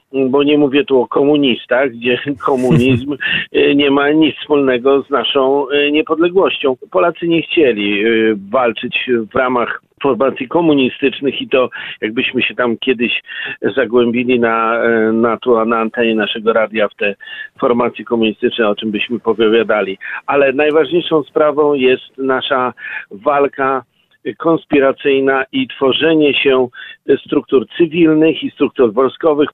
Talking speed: 120 wpm